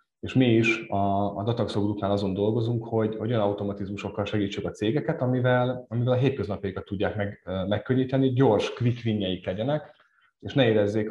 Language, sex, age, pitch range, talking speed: Hungarian, male, 30-49, 100-115 Hz, 150 wpm